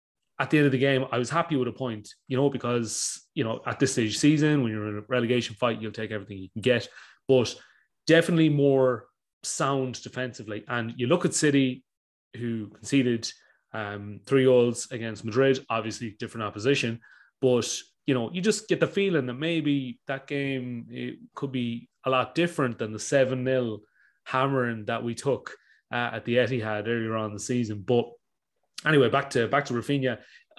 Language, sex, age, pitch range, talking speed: English, male, 30-49, 115-140 Hz, 185 wpm